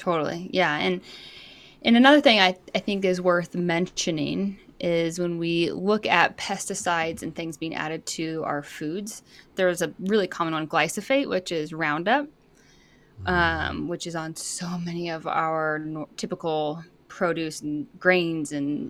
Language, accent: English, American